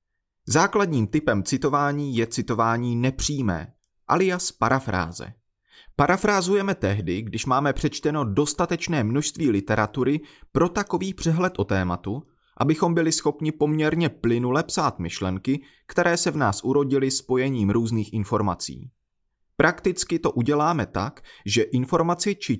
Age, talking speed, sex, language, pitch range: 30-49, 115 wpm, male, Czech, 110-155 Hz